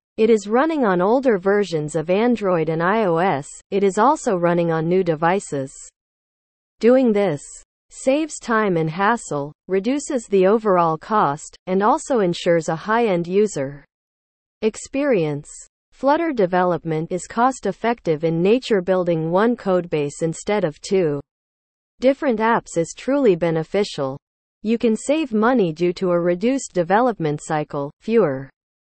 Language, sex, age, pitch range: English, female, 40-59, 165-230 Hz